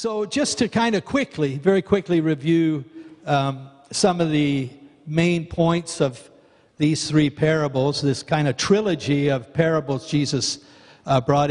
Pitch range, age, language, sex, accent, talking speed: 145-165 Hz, 60-79, English, male, American, 145 wpm